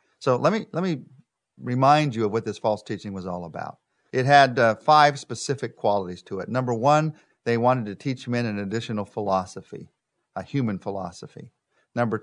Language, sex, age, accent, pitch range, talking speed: English, male, 50-69, American, 110-145 Hz, 180 wpm